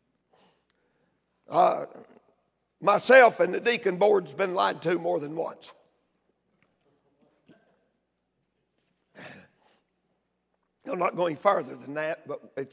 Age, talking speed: 60-79, 95 wpm